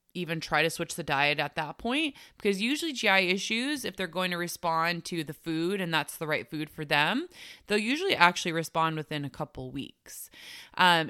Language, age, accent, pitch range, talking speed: English, 20-39, American, 160-210 Hz, 200 wpm